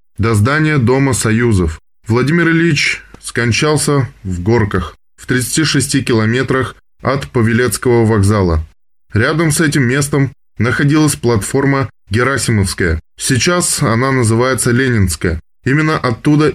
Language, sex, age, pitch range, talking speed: Russian, male, 20-39, 105-140 Hz, 100 wpm